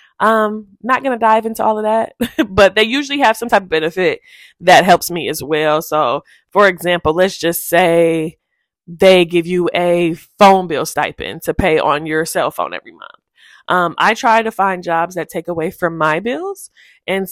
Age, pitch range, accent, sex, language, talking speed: 20-39, 170-220 Hz, American, female, English, 195 wpm